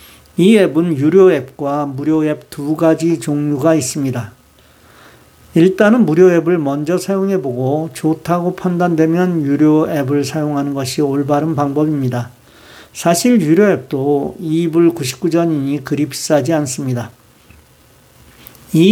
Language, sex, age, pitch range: Korean, male, 50-69, 140-175 Hz